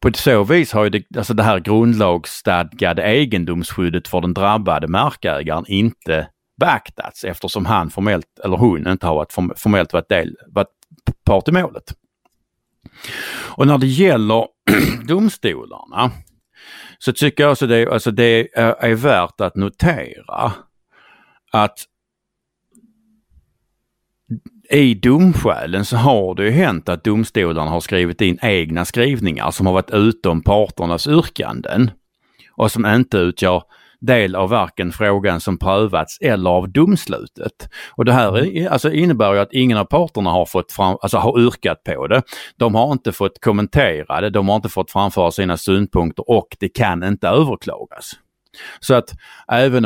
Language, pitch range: Swedish, 90-120 Hz